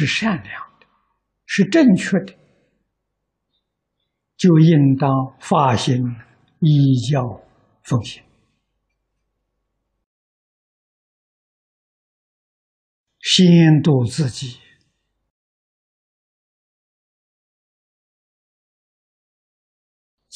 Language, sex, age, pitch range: Chinese, male, 60-79, 125-170 Hz